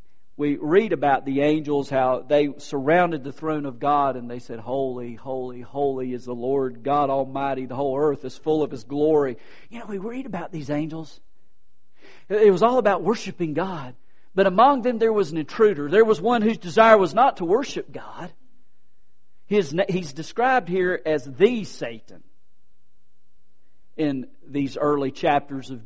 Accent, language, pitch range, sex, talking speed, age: American, English, 125-180 Hz, male, 165 wpm, 50-69